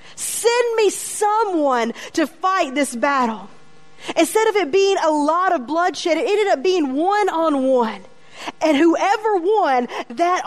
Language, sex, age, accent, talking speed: English, female, 40-59, American, 140 wpm